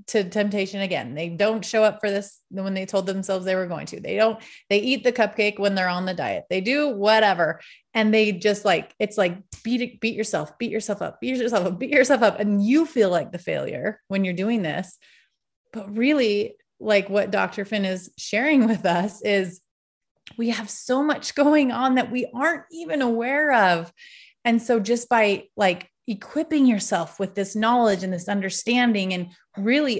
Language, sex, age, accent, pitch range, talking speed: English, female, 30-49, American, 195-235 Hz, 190 wpm